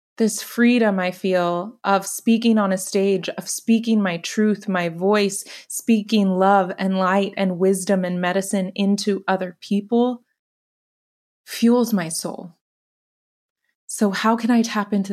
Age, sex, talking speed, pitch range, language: 20-39, female, 140 wpm, 185-210 Hz, English